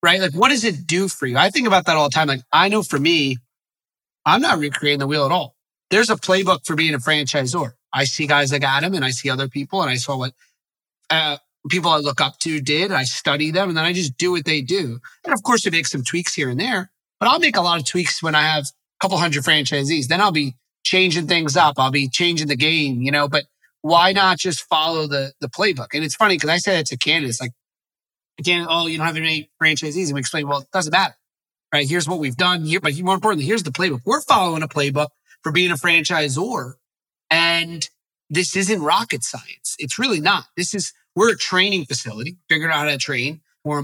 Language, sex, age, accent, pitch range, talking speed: English, male, 30-49, American, 140-175 Hz, 240 wpm